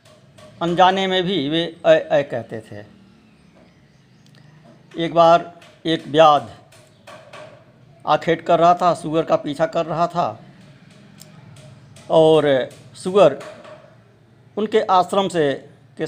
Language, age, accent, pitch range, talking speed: Hindi, 60-79, native, 145-175 Hz, 100 wpm